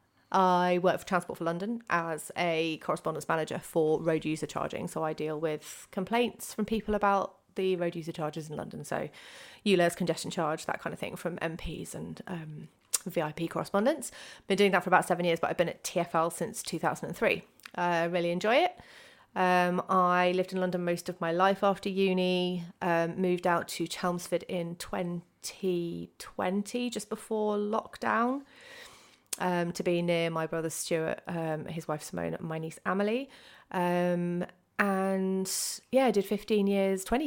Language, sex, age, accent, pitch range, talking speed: English, female, 30-49, British, 170-205 Hz, 170 wpm